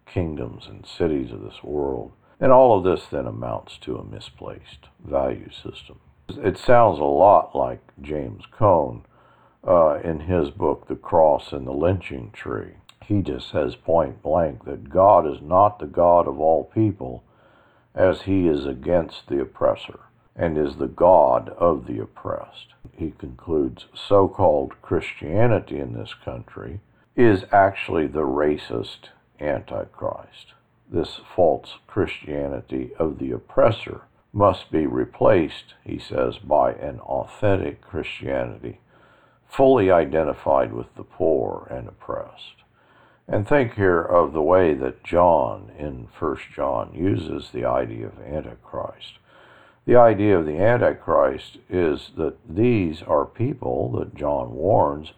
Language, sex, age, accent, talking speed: English, male, 60-79, American, 135 wpm